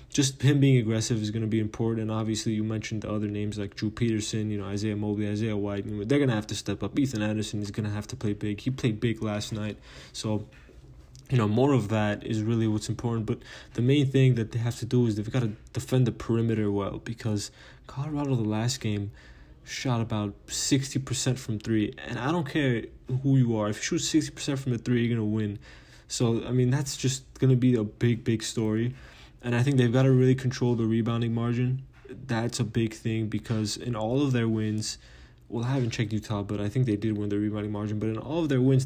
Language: English